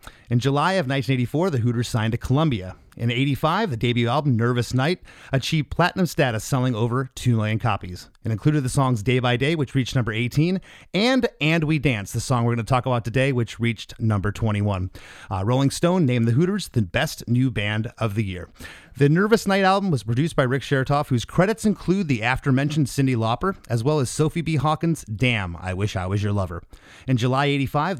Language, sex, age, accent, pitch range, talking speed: English, male, 30-49, American, 115-150 Hz, 210 wpm